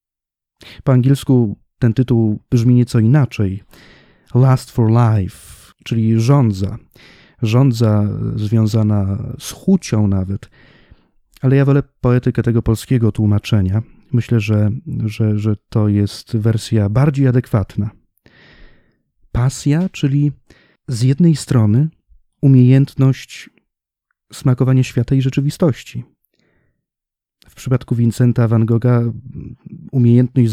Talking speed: 95 wpm